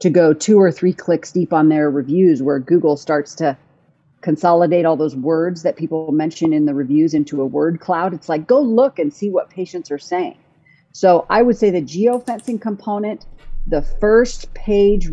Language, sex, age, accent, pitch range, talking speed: English, female, 40-59, American, 155-200 Hz, 190 wpm